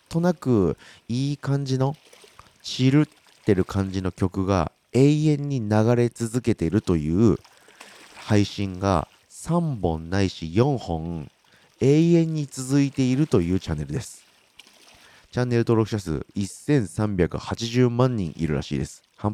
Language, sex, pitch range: Japanese, male, 95-135 Hz